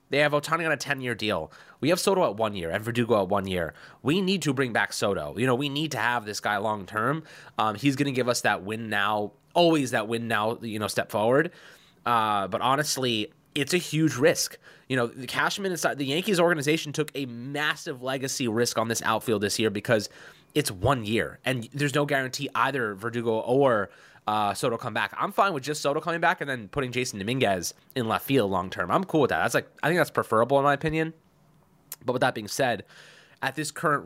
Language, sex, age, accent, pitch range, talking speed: English, male, 20-39, American, 115-150 Hz, 225 wpm